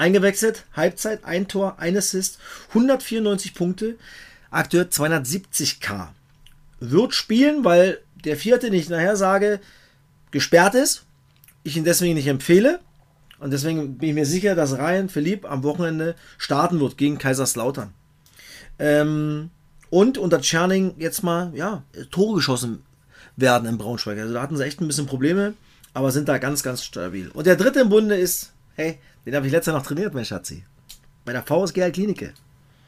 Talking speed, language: 160 wpm, German